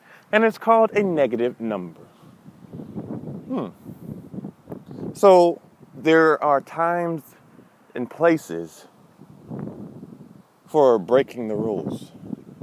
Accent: American